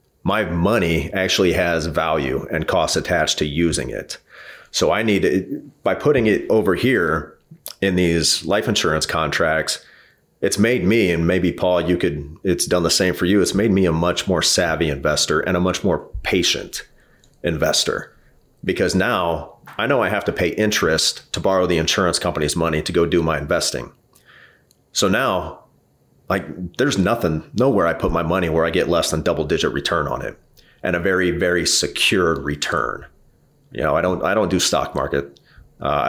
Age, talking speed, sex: 40-59, 180 wpm, male